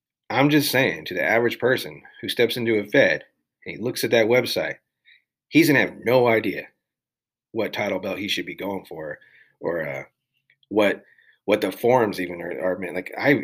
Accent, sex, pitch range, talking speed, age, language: American, male, 100-135 Hz, 190 wpm, 30-49, English